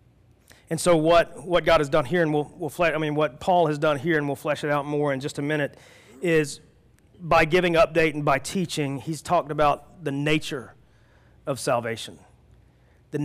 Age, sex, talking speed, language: 40-59, male, 200 wpm, English